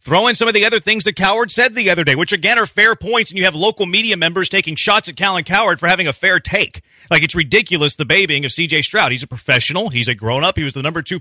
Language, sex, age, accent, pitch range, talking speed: English, male, 30-49, American, 150-210 Hz, 285 wpm